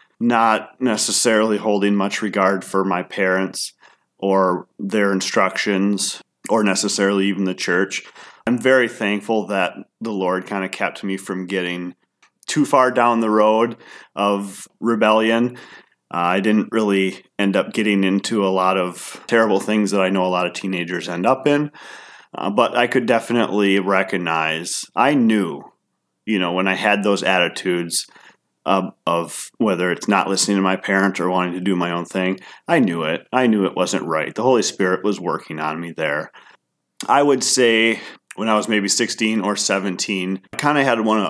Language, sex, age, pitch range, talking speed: English, male, 30-49, 95-110 Hz, 175 wpm